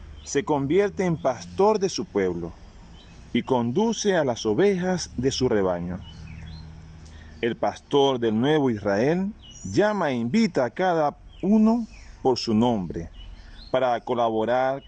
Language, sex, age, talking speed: Spanish, male, 40-59, 125 wpm